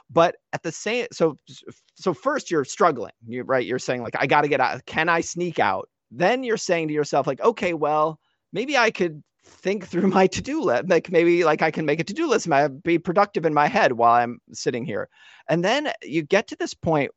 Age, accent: 30-49, American